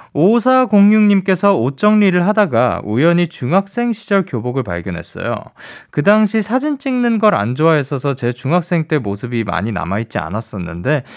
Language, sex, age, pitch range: Korean, male, 20-39, 130-200 Hz